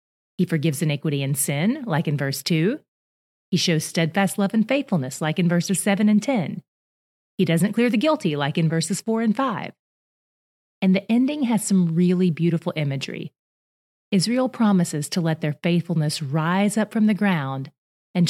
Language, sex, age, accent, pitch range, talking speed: English, female, 30-49, American, 160-210 Hz, 170 wpm